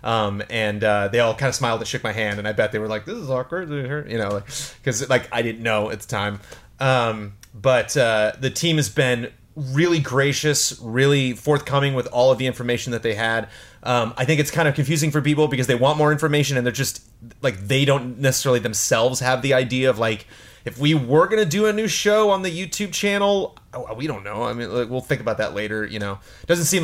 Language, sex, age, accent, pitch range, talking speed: English, male, 30-49, American, 110-140 Hz, 235 wpm